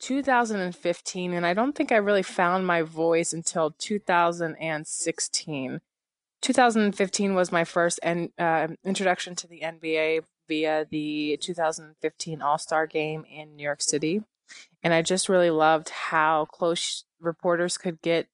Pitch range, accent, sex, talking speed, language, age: 160-200 Hz, American, female, 130 wpm, English, 20-39